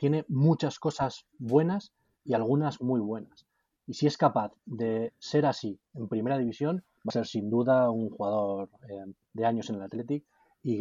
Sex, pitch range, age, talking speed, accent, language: male, 110-140 Hz, 20-39, 180 wpm, Spanish, Spanish